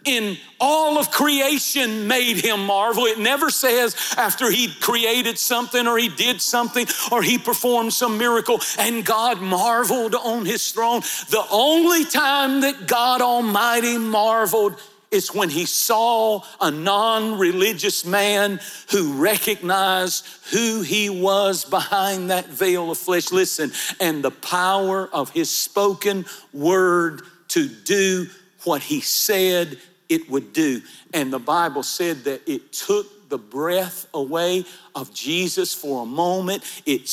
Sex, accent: male, American